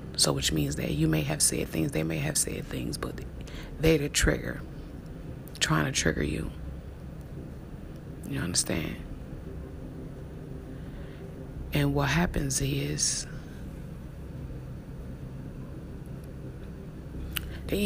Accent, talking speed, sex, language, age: American, 95 wpm, female, English, 30-49